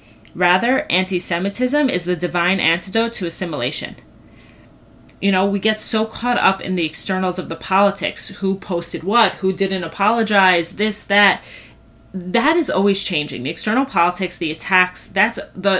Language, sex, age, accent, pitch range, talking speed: English, female, 30-49, American, 165-200 Hz, 150 wpm